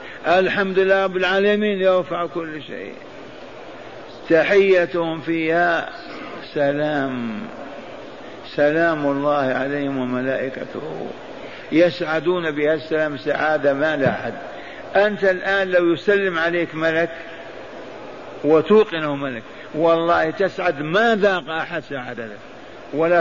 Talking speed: 90 wpm